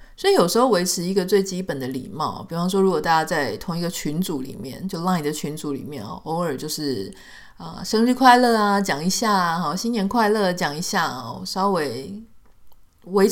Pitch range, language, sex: 165-210 Hz, Chinese, female